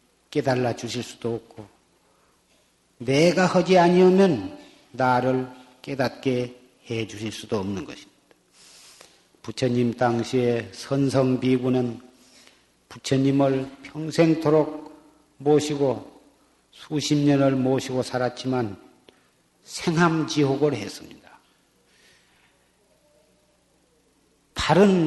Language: Korean